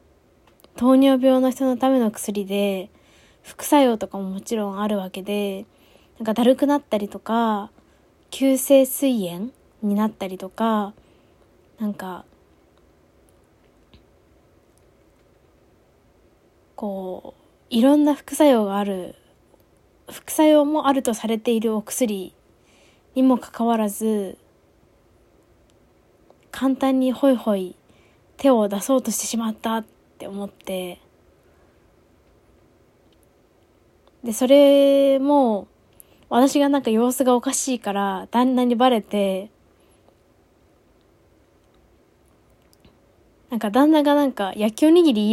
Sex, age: female, 20-39